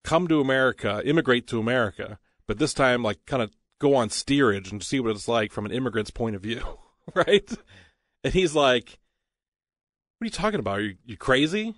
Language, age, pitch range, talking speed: English, 40-59, 110-130 Hz, 200 wpm